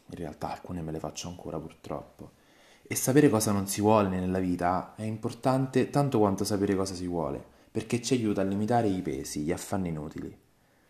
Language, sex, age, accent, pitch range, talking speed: Italian, male, 20-39, native, 85-100 Hz, 185 wpm